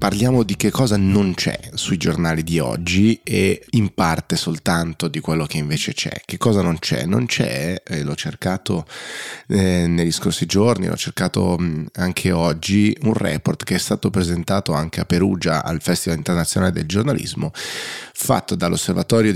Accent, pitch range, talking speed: native, 80-100 Hz, 160 wpm